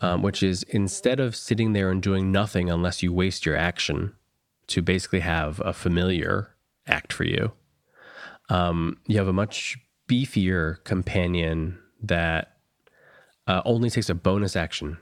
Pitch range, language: 85-105 Hz, English